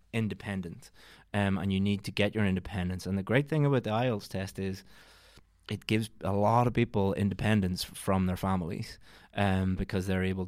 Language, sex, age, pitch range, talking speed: English, male, 20-39, 95-110 Hz, 185 wpm